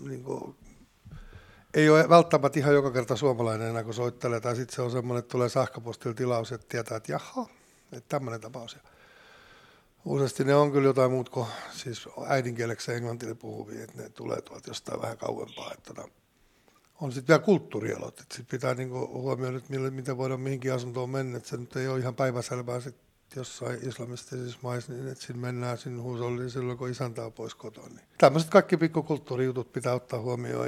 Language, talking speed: Finnish, 170 wpm